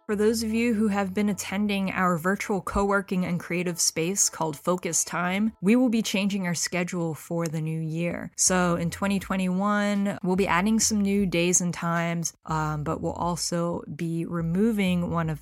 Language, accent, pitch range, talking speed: English, American, 170-195 Hz, 180 wpm